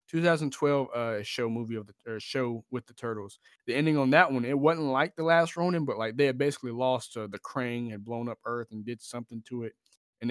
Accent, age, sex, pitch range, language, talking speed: American, 20-39, male, 115-140 Hz, English, 235 wpm